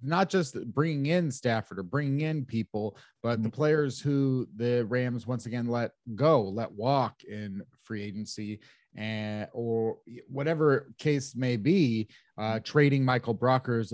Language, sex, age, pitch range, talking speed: English, male, 30-49, 115-140 Hz, 145 wpm